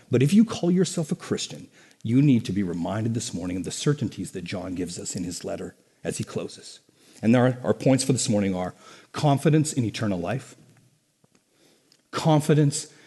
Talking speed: 185 wpm